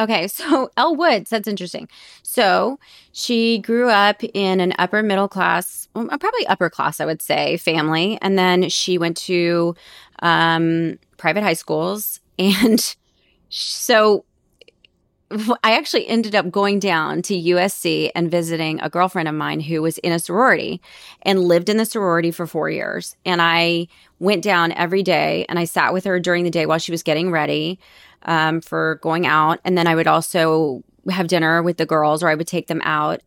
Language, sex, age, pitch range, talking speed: English, female, 30-49, 165-205 Hz, 180 wpm